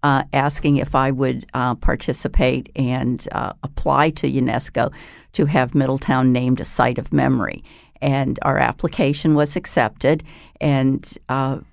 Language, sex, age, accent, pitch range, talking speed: English, female, 50-69, American, 135-155 Hz, 135 wpm